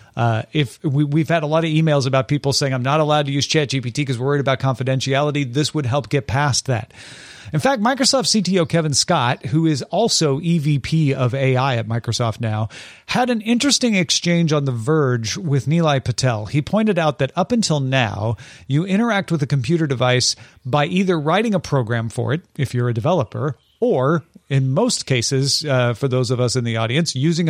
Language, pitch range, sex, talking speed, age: English, 130-170 Hz, male, 200 wpm, 40-59